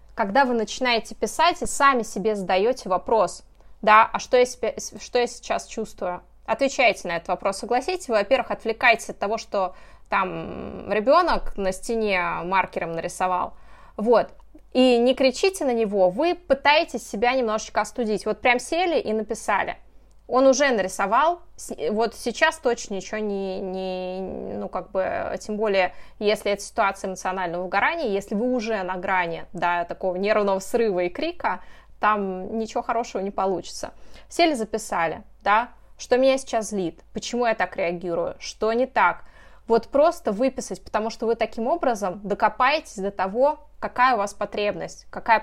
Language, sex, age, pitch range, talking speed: Russian, female, 20-39, 190-245 Hz, 150 wpm